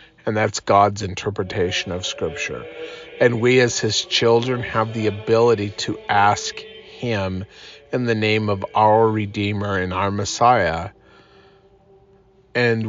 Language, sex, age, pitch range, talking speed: English, male, 40-59, 110-140 Hz, 125 wpm